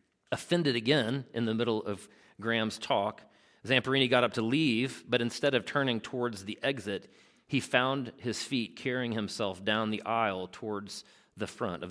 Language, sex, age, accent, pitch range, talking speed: English, male, 40-59, American, 105-130 Hz, 165 wpm